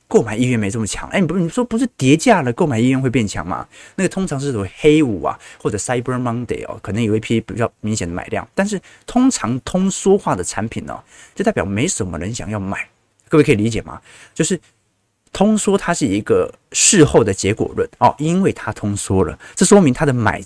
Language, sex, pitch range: Chinese, male, 105-155 Hz